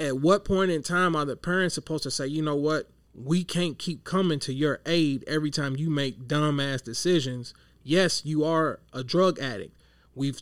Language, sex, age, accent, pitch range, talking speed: English, male, 30-49, American, 130-165 Hz, 200 wpm